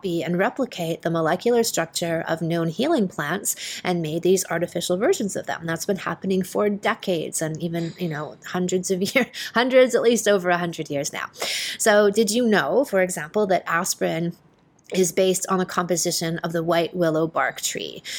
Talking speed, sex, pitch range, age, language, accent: 180 wpm, female, 170-205 Hz, 30-49, English, American